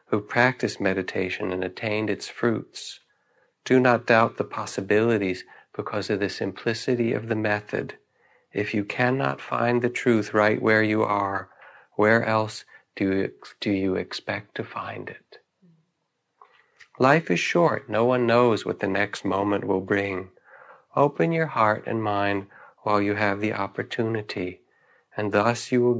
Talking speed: 145 wpm